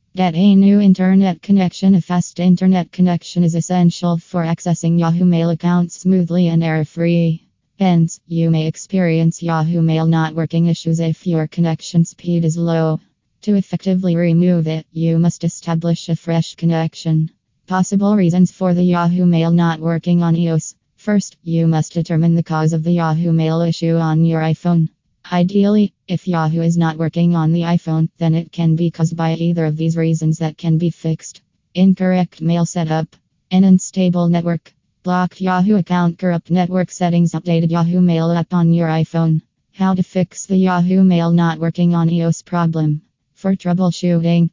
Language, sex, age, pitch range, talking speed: English, female, 20-39, 165-180 Hz, 165 wpm